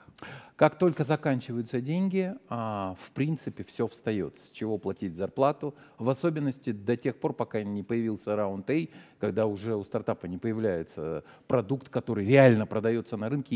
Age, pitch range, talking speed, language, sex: 40-59, 105-135 Hz, 150 wpm, Russian, male